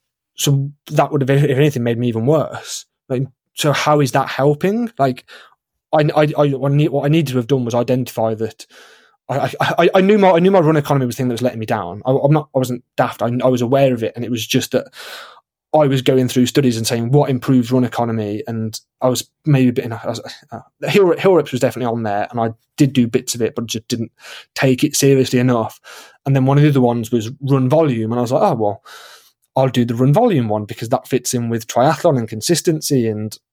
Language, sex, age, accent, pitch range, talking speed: English, male, 20-39, British, 120-145 Hz, 245 wpm